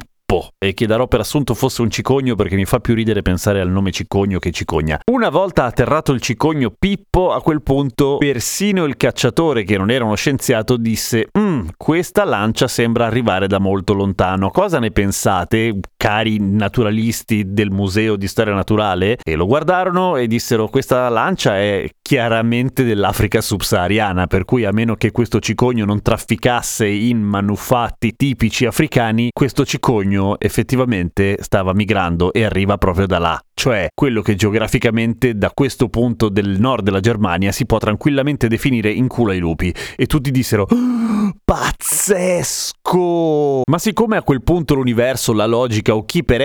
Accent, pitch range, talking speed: native, 105-135 Hz, 160 wpm